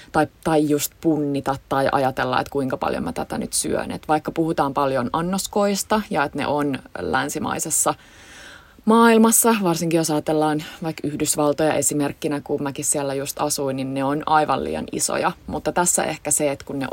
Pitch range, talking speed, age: 145-180 Hz, 170 wpm, 20-39